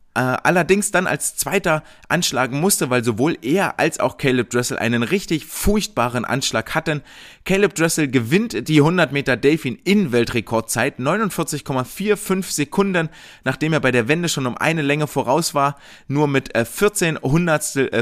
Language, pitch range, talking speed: German, 125-160 Hz, 145 wpm